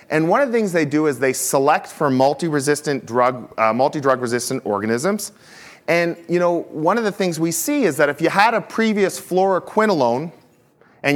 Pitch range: 135-180 Hz